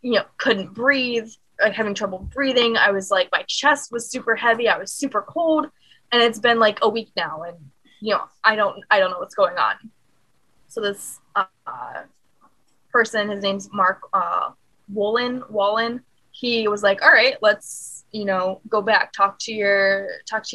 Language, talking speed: English, 185 wpm